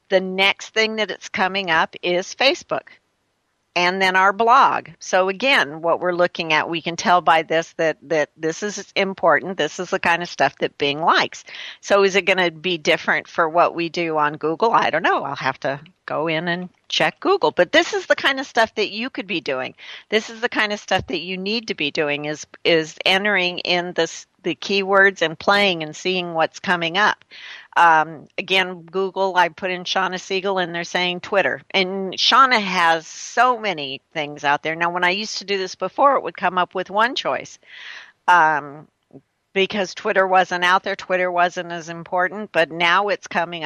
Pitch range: 165-195 Hz